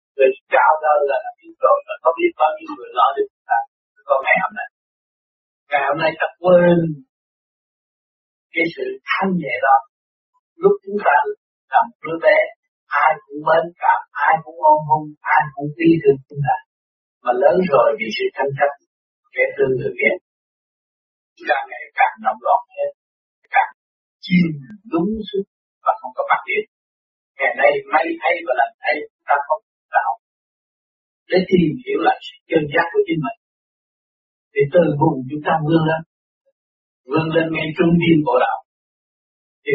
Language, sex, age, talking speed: Vietnamese, male, 60-79, 145 wpm